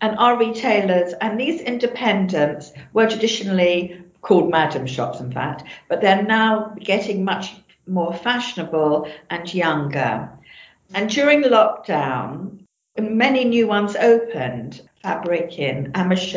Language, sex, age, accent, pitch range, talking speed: French, female, 50-69, British, 150-190 Hz, 115 wpm